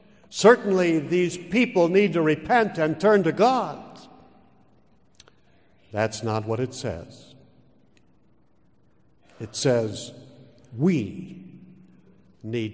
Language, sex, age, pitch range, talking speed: English, male, 60-79, 120-170 Hz, 90 wpm